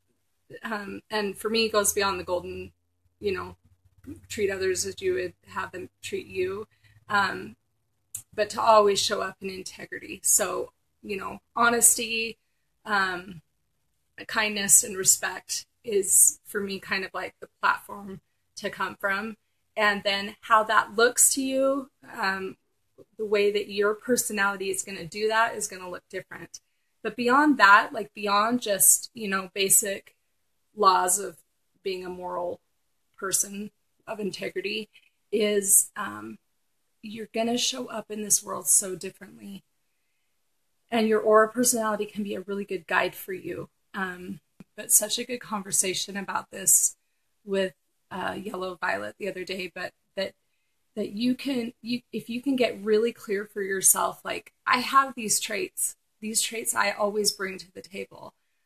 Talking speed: 155 wpm